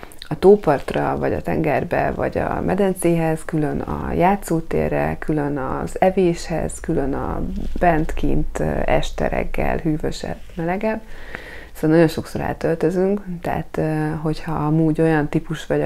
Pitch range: 140-160 Hz